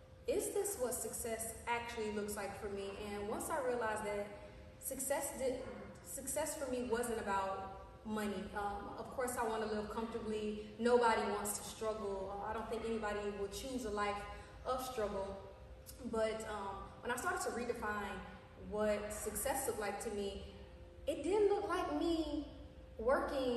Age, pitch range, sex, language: 20-39, 210-250 Hz, female, Amharic